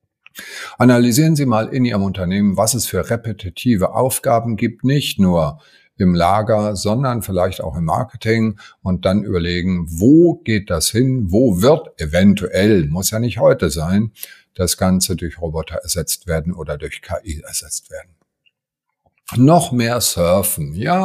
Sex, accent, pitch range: male, German, 90-120 Hz